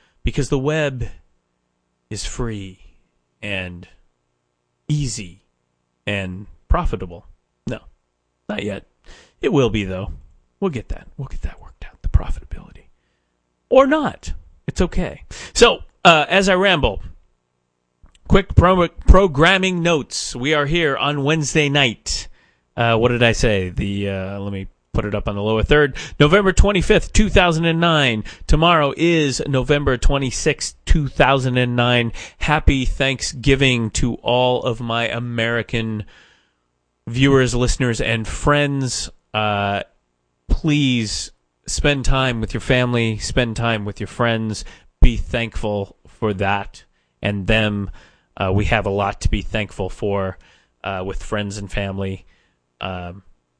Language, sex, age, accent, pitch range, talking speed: English, male, 40-59, American, 85-130 Hz, 125 wpm